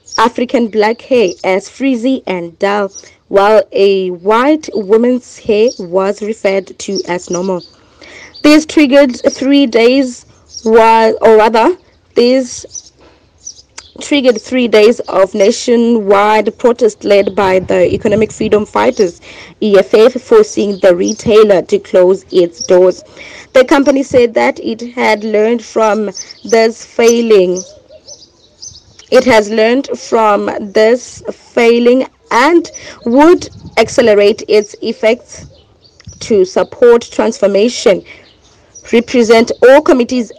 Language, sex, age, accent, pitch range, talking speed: English, female, 20-39, South African, 205-265 Hz, 105 wpm